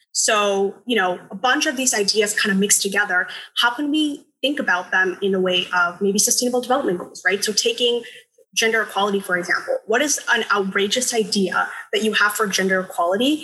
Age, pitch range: 10-29, 195-245 Hz